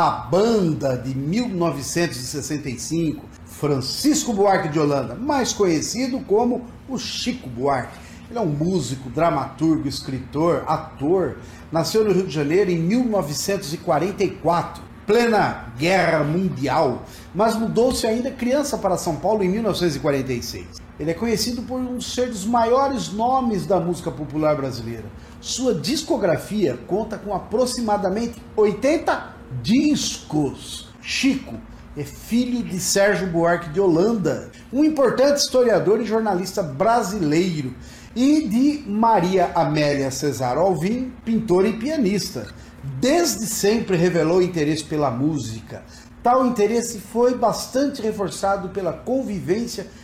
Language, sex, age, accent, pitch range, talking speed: Portuguese, male, 50-69, Brazilian, 160-240 Hz, 115 wpm